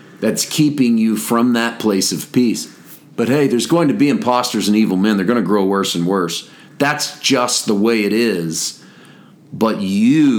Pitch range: 100-120 Hz